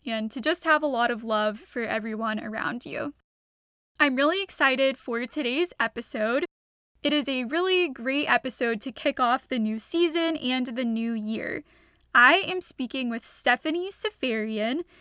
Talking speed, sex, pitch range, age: 160 wpm, female, 235-315 Hz, 10-29